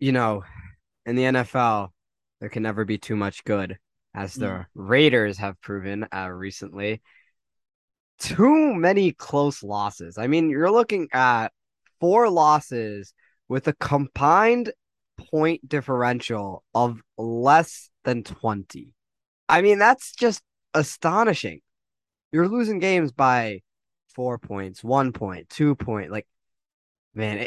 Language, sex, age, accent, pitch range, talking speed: English, male, 20-39, American, 105-145 Hz, 120 wpm